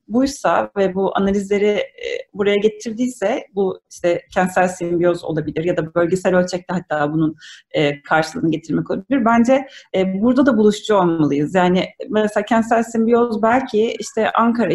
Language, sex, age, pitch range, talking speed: Turkish, female, 30-49, 185-240 Hz, 130 wpm